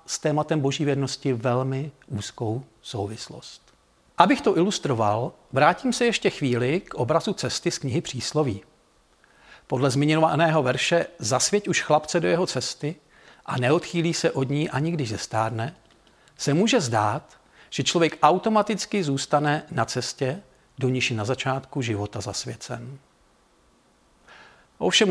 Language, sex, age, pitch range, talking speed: Czech, male, 50-69, 125-165 Hz, 125 wpm